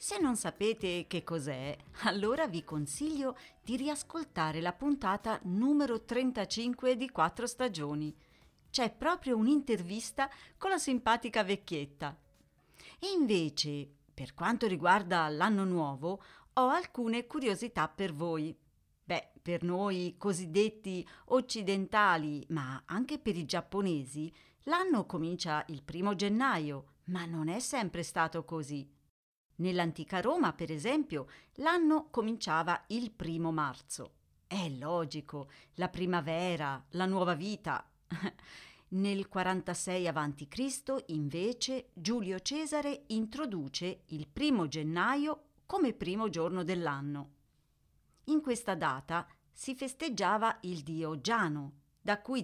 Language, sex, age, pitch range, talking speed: Italian, female, 40-59, 160-240 Hz, 110 wpm